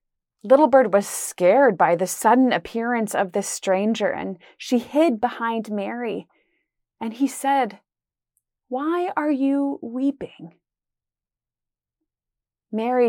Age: 30-49